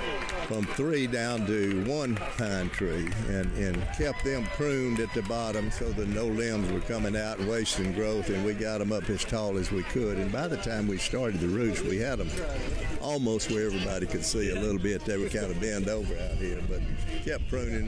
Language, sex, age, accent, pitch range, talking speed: English, male, 60-79, American, 90-110 Hz, 220 wpm